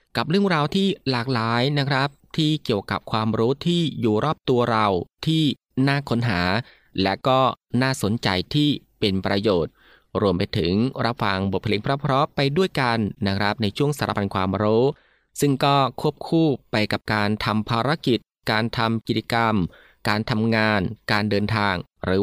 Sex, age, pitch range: male, 20-39, 100-135 Hz